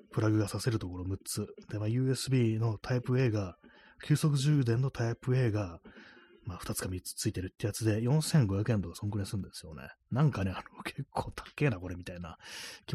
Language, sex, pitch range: Japanese, male, 95-135 Hz